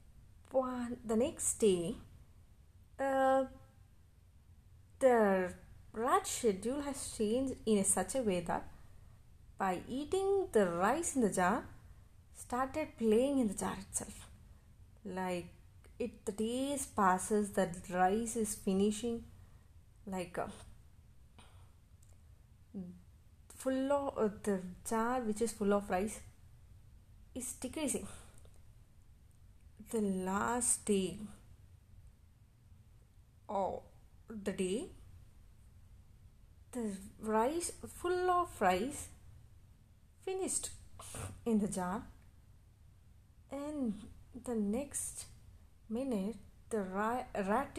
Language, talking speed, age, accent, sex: Telugu, 90 wpm, 30-49, native, female